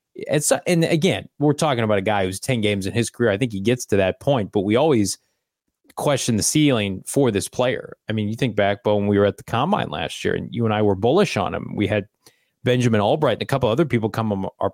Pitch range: 105-135 Hz